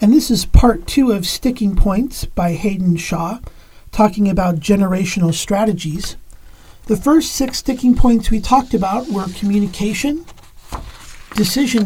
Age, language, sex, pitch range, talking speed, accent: 50-69, English, male, 180-245 Hz, 130 wpm, American